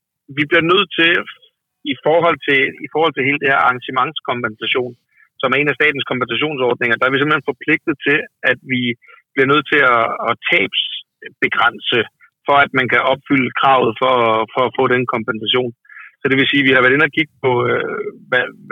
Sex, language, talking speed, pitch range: male, Danish, 185 wpm, 125-150 Hz